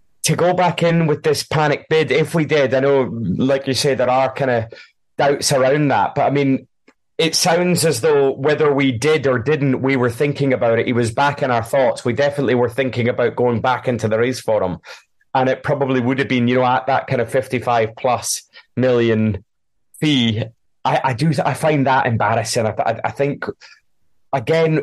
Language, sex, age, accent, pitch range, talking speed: English, male, 30-49, British, 120-140 Hz, 205 wpm